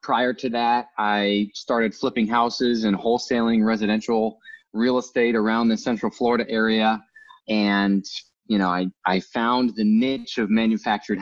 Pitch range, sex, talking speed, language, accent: 105-125 Hz, male, 145 wpm, English, American